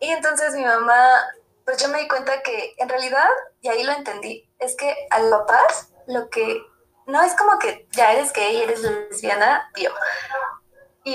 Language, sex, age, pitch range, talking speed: Spanish, female, 20-39, 215-280 Hz, 185 wpm